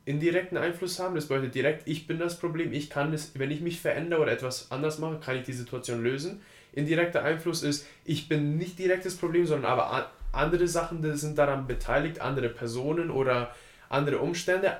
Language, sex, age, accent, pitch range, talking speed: German, male, 20-39, German, 130-160 Hz, 195 wpm